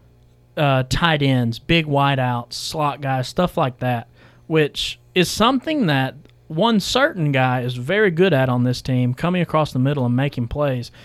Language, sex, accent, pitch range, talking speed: English, male, American, 130-170 Hz, 170 wpm